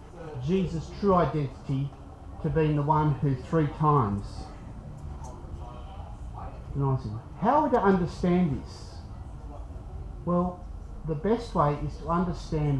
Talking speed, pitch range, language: 110 wpm, 110-175 Hz, English